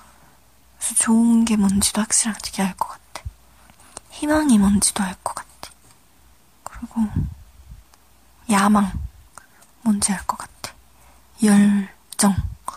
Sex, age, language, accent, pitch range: female, 20-39, Korean, native, 200-245 Hz